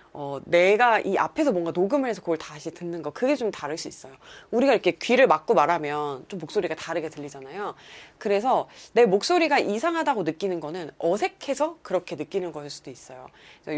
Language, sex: Korean, female